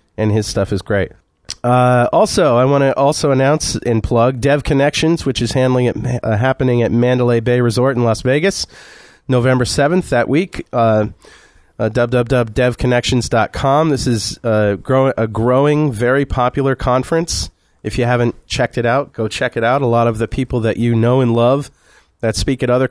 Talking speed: 175 wpm